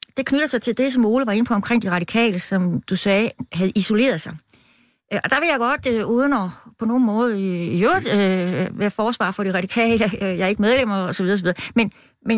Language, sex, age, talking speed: Danish, female, 60-79, 220 wpm